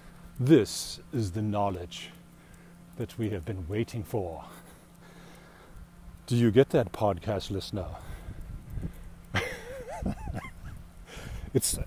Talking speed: 85 wpm